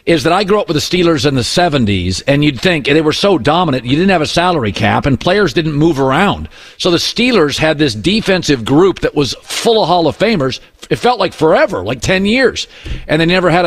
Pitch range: 150-200 Hz